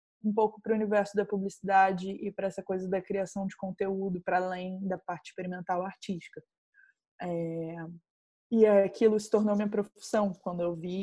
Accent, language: Brazilian, Portuguese